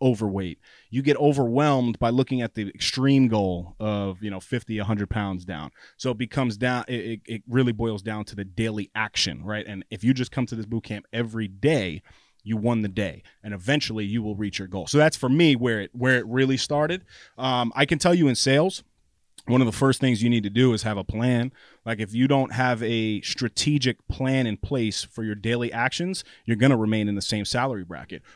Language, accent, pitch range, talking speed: English, American, 105-130 Hz, 225 wpm